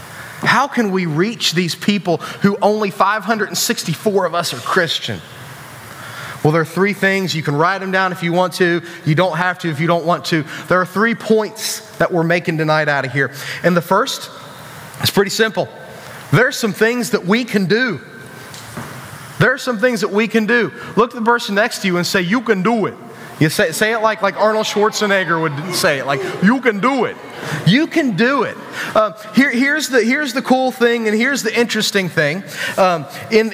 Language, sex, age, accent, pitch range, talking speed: English, male, 30-49, American, 165-220 Hz, 210 wpm